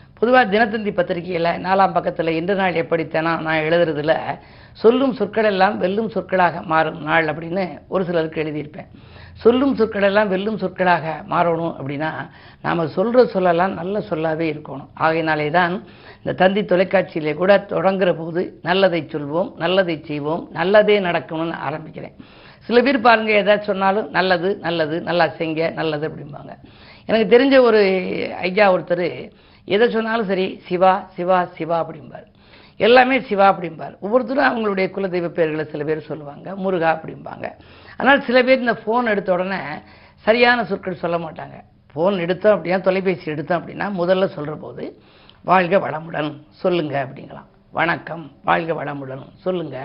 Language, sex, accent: Tamil, female, native